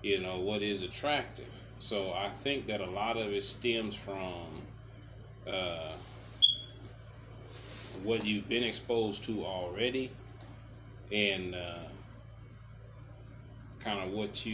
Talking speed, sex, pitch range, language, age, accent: 105 wpm, male, 100-120 Hz, English, 30-49, American